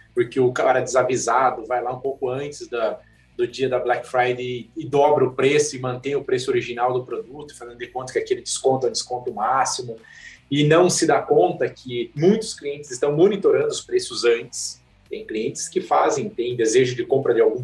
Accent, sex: Brazilian, male